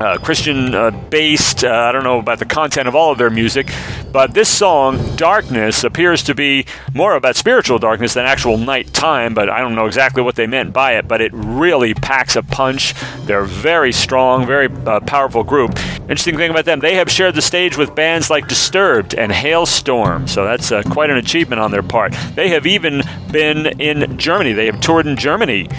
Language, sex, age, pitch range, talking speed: English, male, 40-59, 125-160 Hz, 205 wpm